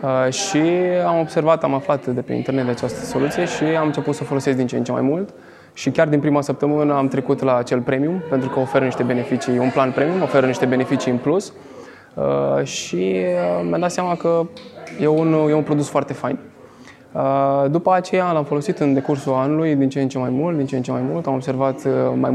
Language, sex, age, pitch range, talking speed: Romanian, male, 20-39, 130-155 Hz, 210 wpm